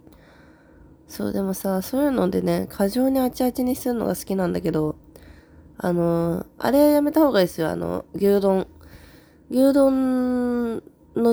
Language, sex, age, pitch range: Japanese, female, 20-39, 155-230 Hz